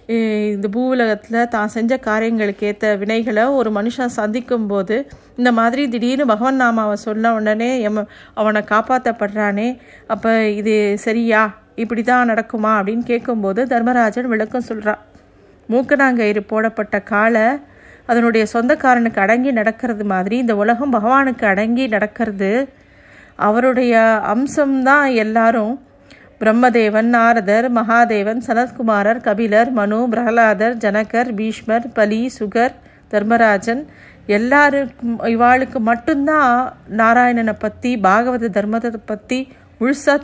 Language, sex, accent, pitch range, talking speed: Tamil, female, native, 215-245 Hz, 105 wpm